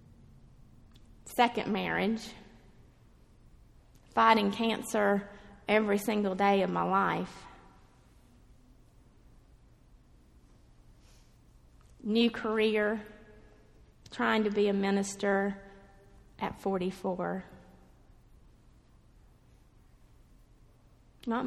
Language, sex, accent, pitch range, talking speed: English, female, American, 205-280 Hz, 55 wpm